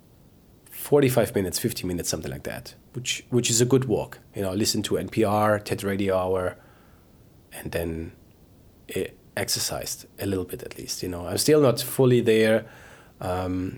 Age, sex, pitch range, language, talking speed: 30-49, male, 95-115 Hz, English, 160 wpm